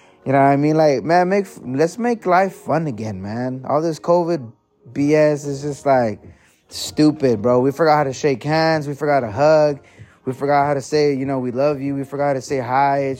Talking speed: 225 wpm